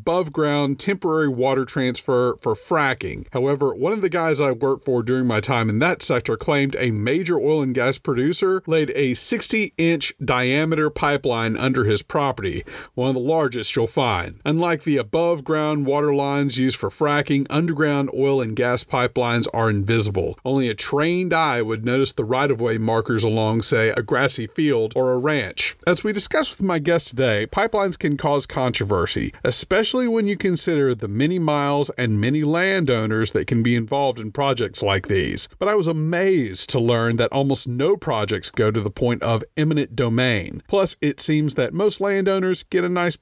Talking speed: 175 wpm